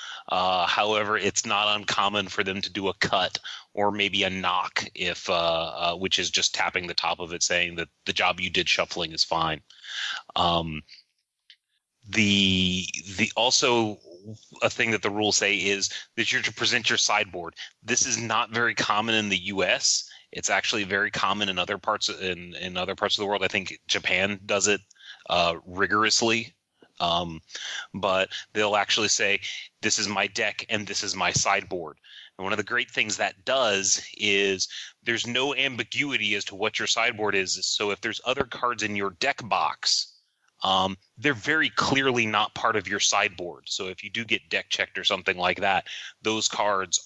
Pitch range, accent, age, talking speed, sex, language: 95-110 Hz, American, 30-49, 185 wpm, male, English